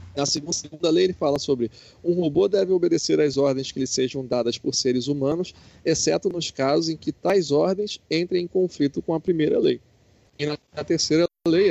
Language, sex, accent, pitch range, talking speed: Portuguese, male, Brazilian, 125-165 Hz, 195 wpm